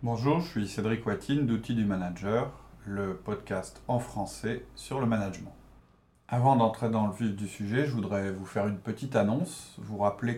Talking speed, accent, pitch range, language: 180 wpm, French, 100-115 Hz, French